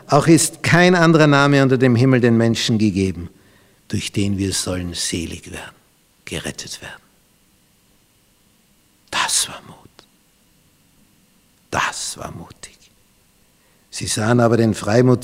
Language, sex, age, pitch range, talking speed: German, male, 60-79, 100-135 Hz, 120 wpm